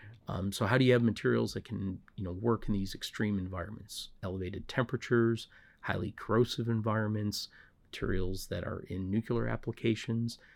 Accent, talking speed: American, 155 wpm